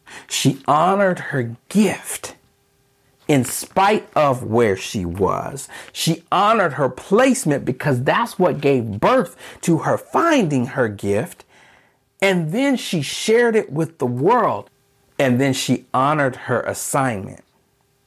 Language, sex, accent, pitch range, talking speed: English, male, American, 135-200 Hz, 125 wpm